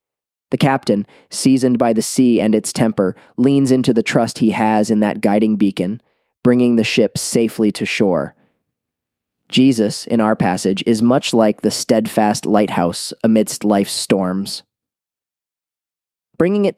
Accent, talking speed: American, 145 wpm